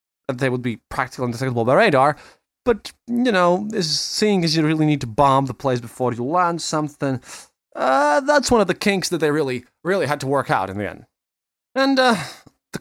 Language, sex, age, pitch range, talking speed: English, male, 20-39, 150-215 Hz, 210 wpm